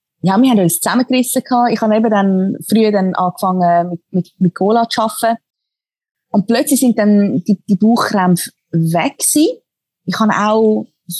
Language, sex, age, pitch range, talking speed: German, female, 30-49, 190-250 Hz, 165 wpm